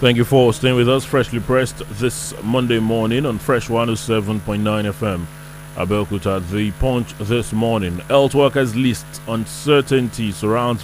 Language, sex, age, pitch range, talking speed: English, male, 30-49, 110-145 Hz, 145 wpm